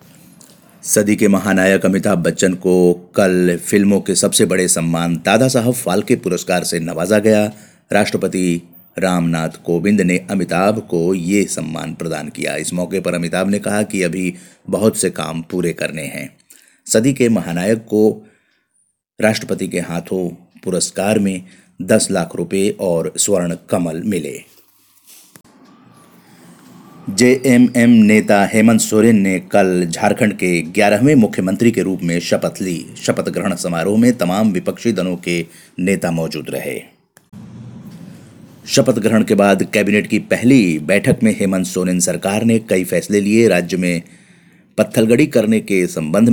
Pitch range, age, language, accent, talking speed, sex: 85-110 Hz, 50-69, Hindi, native, 140 wpm, male